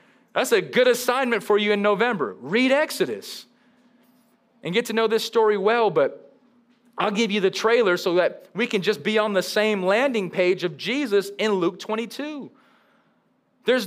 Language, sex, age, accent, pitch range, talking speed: English, male, 30-49, American, 205-245 Hz, 175 wpm